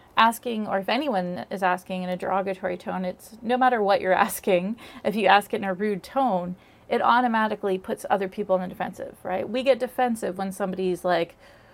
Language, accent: English, American